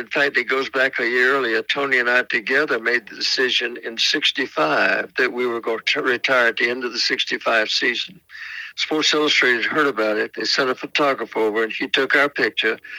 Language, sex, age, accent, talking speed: English, male, 60-79, American, 210 wpm